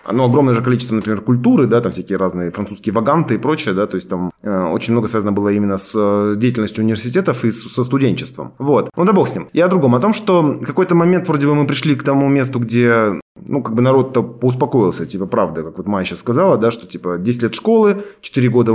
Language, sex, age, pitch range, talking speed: Russian, male, 30-49, 105-145 Hz, 240 wpm